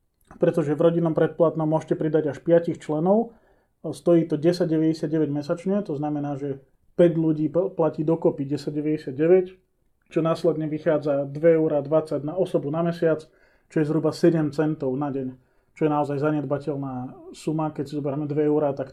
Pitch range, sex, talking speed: 140-160 Hz, male, 150 wpm